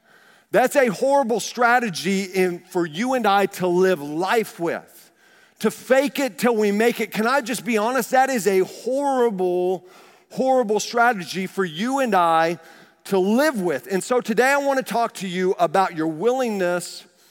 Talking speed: 165 wpm